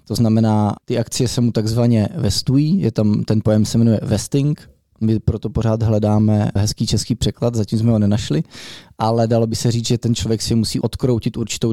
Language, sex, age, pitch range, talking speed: Czech, male, 20-39, 105-120 Hz, 195 wpm